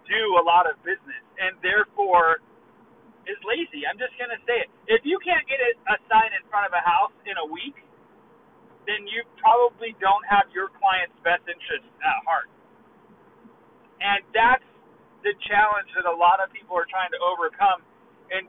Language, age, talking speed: English, 30-49, 175 wpm